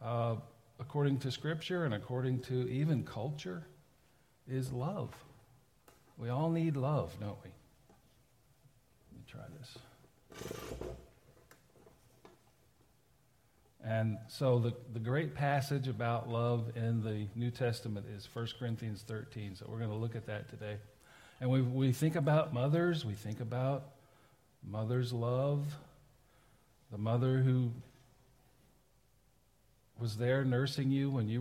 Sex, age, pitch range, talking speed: male, 50-69, 115-130 Hz, 125 wpm